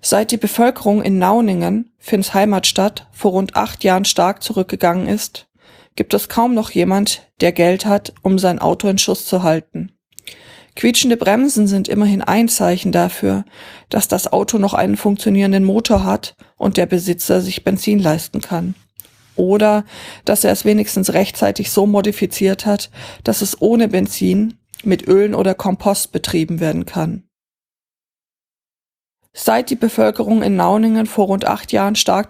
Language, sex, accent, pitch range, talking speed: German, female, German, 180-210 Hz, 150 wpm